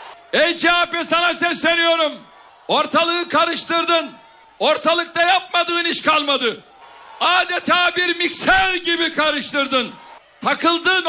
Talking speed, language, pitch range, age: 85 wpm, Turkish, 295-340 Hz, 60-79